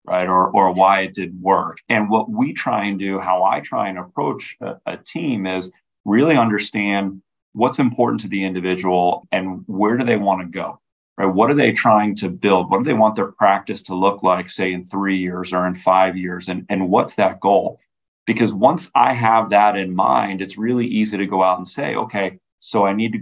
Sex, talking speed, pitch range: male, 220 wpm, 95-105 Hz